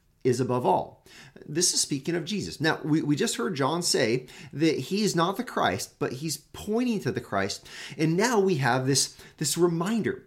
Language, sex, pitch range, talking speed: English, male, 130-185 Hz, 200 wpm